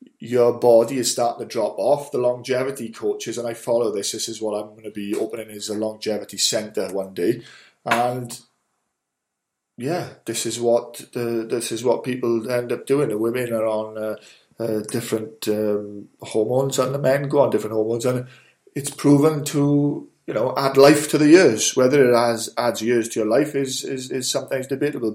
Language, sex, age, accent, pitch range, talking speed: English, male, 20-39, British, 110-130 Hz, 195 wpm